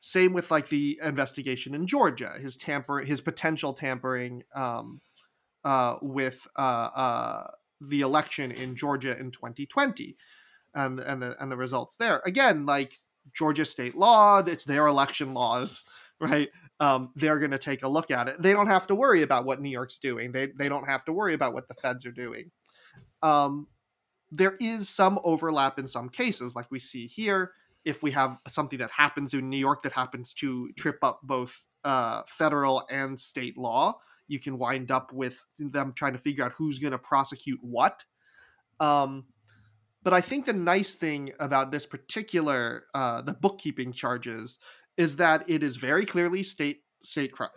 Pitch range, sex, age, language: 130-160 Hz, male, 30-49, English